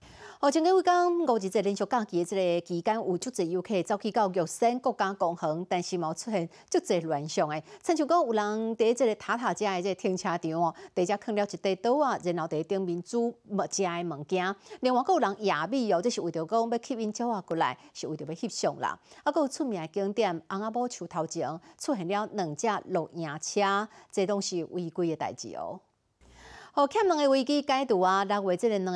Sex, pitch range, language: female, 175-235 Hz, Chinese